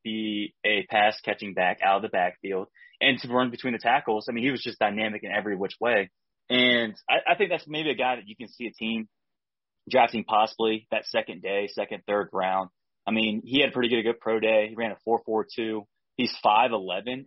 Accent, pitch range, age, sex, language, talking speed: American, 105-130 Hz, 20-39, male, English, 235 wpm